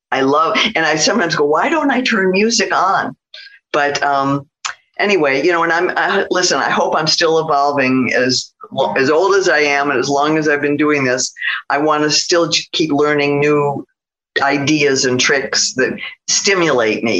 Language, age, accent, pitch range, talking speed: English, 50-69, American, 140-190 Hz, 185 wpm